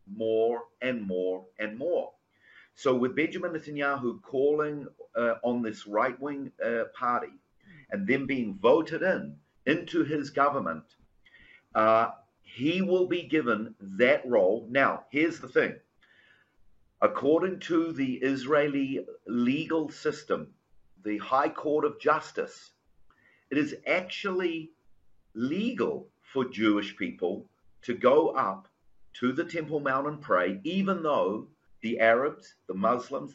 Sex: male